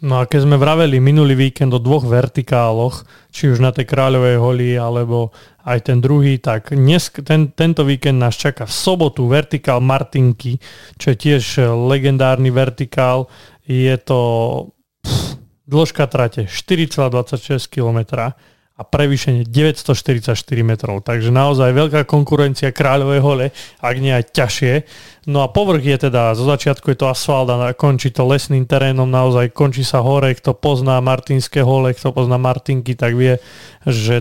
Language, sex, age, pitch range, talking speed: Slovak, male, 30-49, 125-140 Hz, 150 wpm